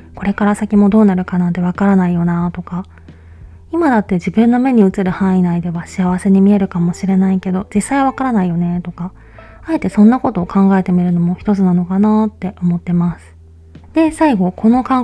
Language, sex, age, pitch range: Japanese, female, 20-39, 180-215 Hz